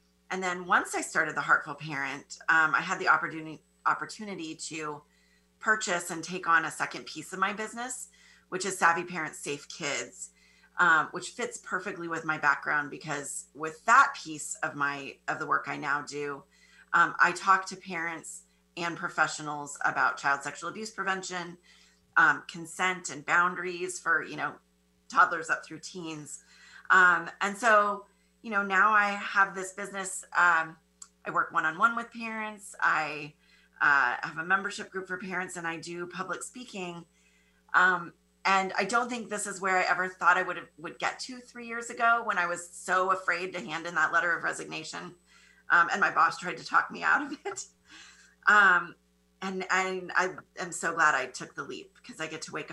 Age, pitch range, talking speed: 30-49, 150-195 Hz, 185 wpm